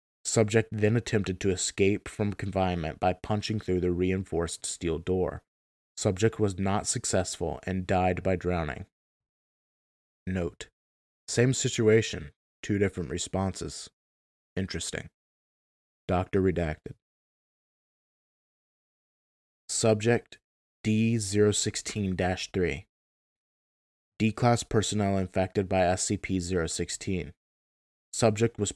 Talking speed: 85 wpm